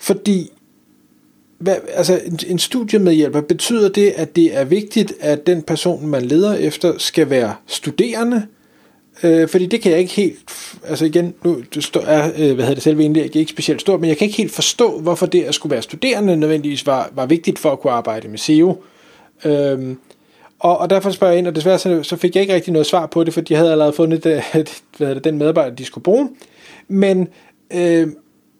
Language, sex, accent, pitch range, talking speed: Danish, male, native, 155-190 Hz, 205 wpm